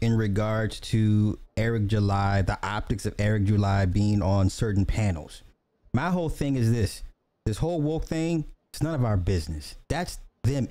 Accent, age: American, 30-49